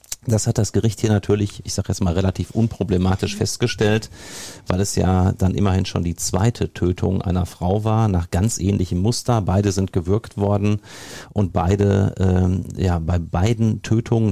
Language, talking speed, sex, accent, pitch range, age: German, 170 wpm, male, German, 95-115 Hz, 40-59